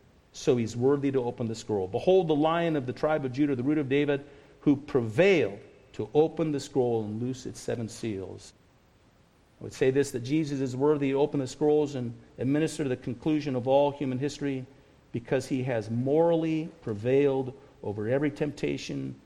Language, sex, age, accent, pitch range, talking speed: English, male, 50-69, American, 125-155 Hz, 180 wpm